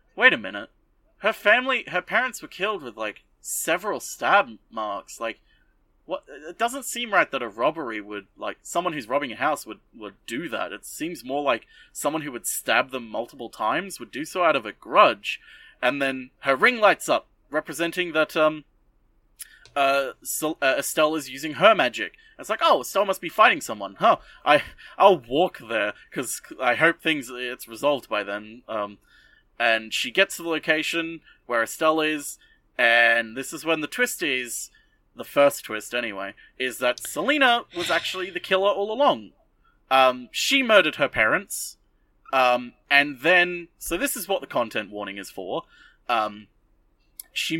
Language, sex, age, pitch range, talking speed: English, male, 20-39, 125-195 Hz, 175 wpm